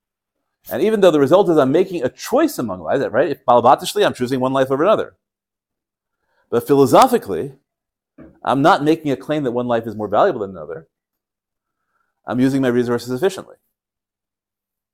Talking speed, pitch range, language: 160 wpm, 95-125 Hz, English